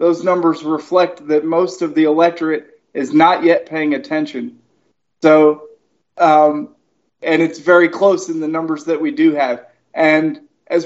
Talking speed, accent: 155 wpm, American